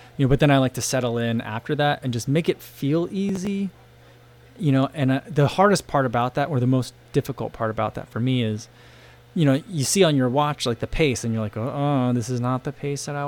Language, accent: English, American